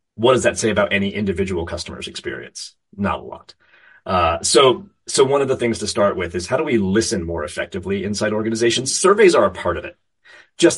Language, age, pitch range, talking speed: English, 30-49, 95-135 Hz, 210 wpm